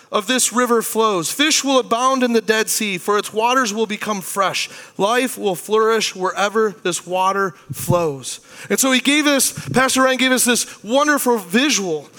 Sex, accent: male, American